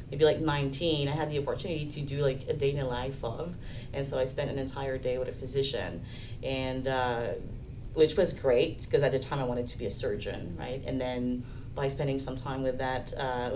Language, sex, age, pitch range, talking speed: English, female, 30-49, 130-150 Hz, 225 wpm